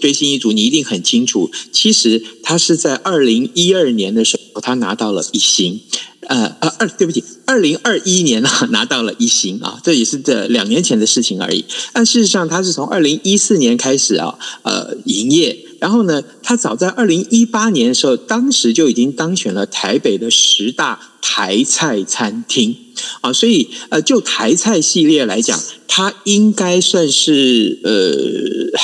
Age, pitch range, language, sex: 50-69, 165-245 Hz, Chinese, male